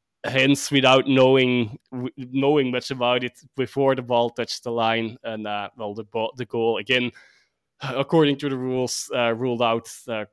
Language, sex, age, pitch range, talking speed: English, male, 20-39, 120-140 Hz, 170 wpm